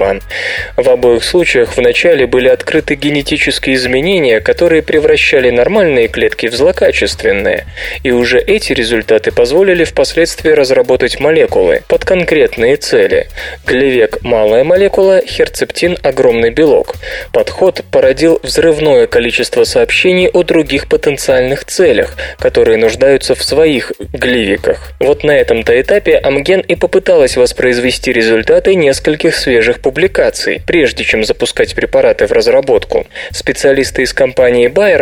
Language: Russian